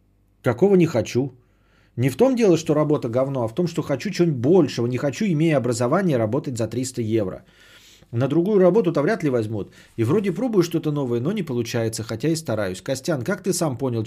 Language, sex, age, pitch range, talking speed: Bulgarian, male, 30-49, 105-145 Hz, 200 wpm